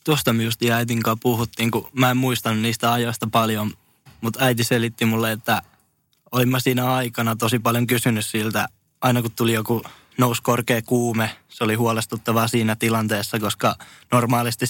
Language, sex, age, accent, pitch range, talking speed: Finnish, male, 10-29, native, 110-120 Hz, 145 wpm